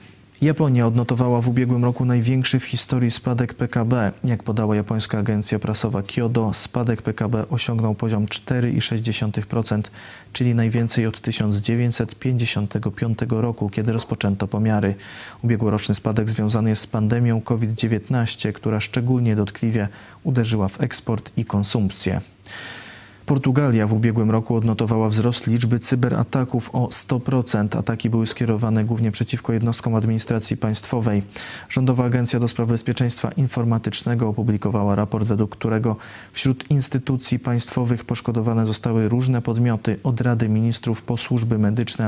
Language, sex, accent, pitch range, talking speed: Polish, male, native, 110-120 Hz, 120 wpm